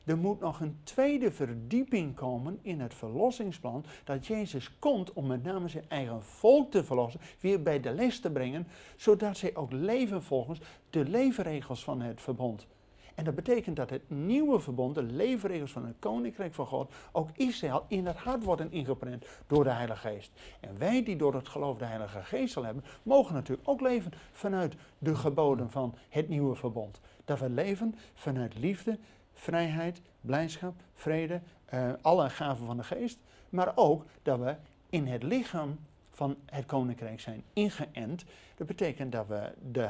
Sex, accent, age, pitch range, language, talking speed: male, Dutch, 50-69, 130-180 Hz, Dutch, 175 wpm